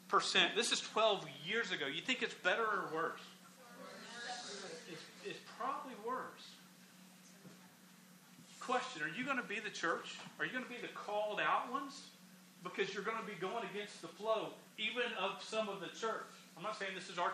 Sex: male